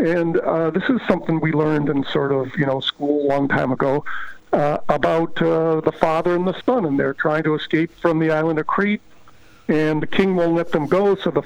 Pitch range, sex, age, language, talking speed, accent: 155-175 Hz, male, 50-69, English, 230 wpm, American